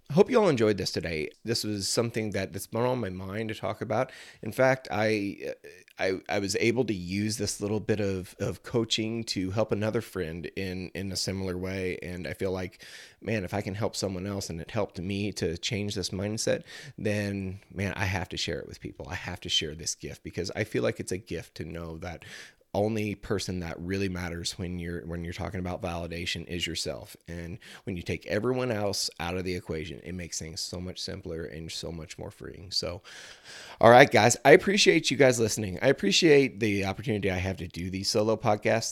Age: 30-49